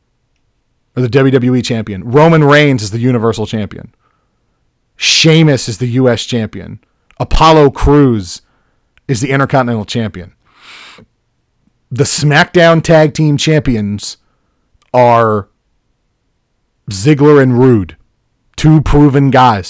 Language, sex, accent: English, male, American